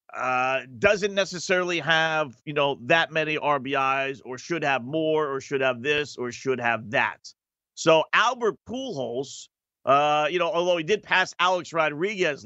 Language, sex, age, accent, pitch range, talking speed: English, male, 40-59, American, 145-200 Hz, 160 wpm